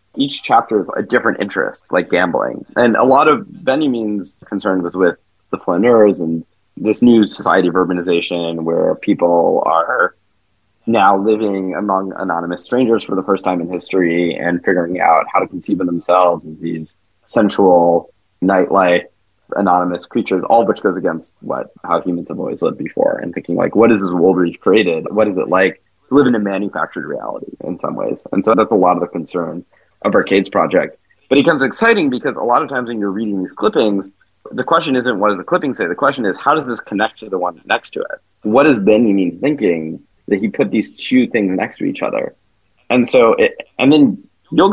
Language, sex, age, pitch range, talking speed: English, male, 20-39, 90-110 Hz, 205 wpm